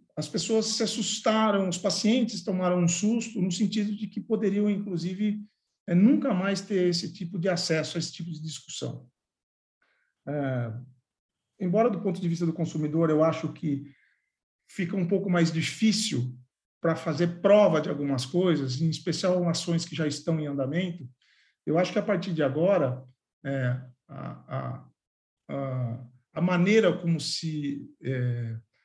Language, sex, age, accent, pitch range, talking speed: Portuguese, male, 50-69, Brazilian, 155-205 Hz, 150 wpm